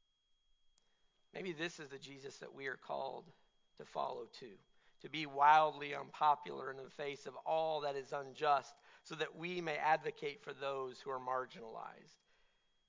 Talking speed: 160 wpm